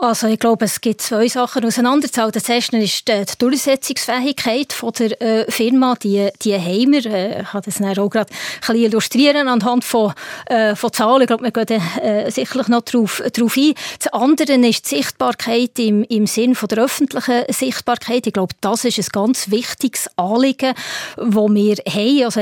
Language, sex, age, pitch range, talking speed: German, female, 30-49, 205-245 Hz, 165 wpm